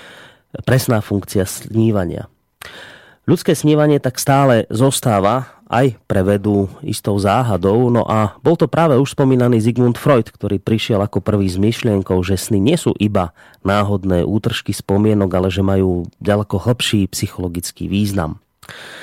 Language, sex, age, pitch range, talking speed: Slovak, male, 30-49, 95-125 Hz, 135 wpm